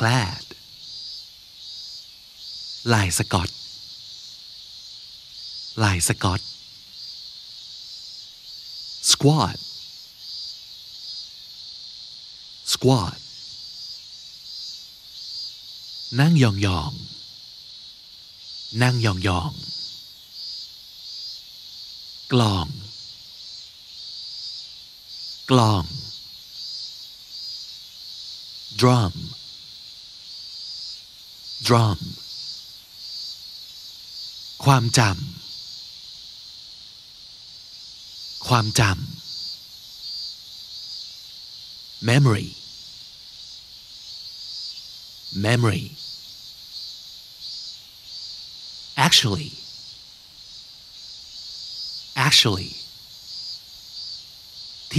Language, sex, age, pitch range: Thai, male, 60-79, 100-125 Hz